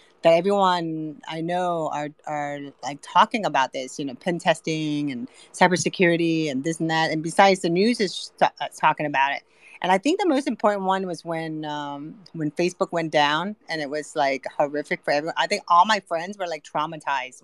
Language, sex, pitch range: English, female, 155-195 Hz